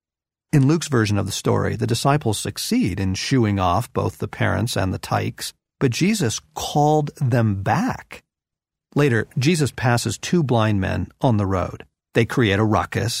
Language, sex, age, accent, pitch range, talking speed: English, male, 50-69, American, 105-150 Hz, 165 wpm